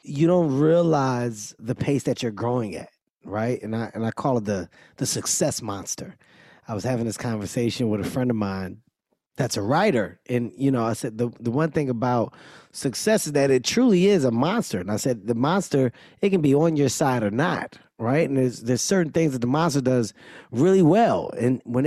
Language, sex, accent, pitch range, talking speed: English, male, American, 130-175 Hz, 215 wpm